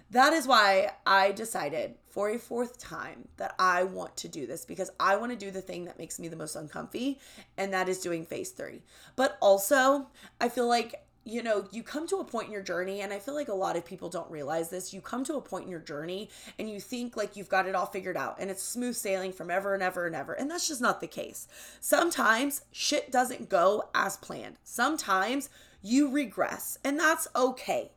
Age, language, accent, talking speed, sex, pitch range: 20-39, English, American, 225 wpm, female, 190-260 Hz